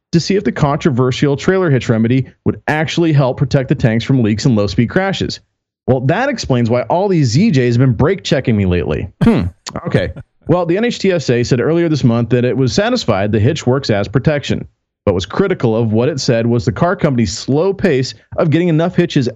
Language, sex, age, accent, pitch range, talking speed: English, male, 40-59, American, 120-170 Hz, 205 wpm